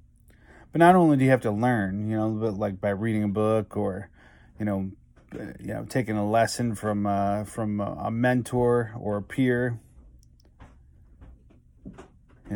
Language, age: English, 30-49